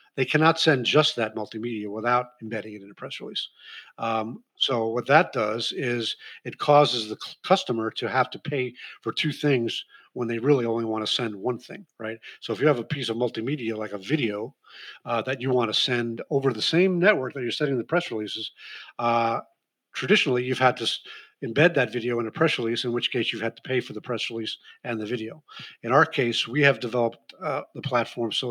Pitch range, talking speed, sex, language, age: 115-135 Hz, 215 wpm, male, English, 50-69